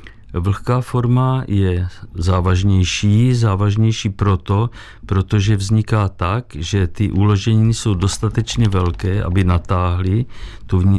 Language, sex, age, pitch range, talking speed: Czech, male, 50-69, 95-110 Hz, 100 wpm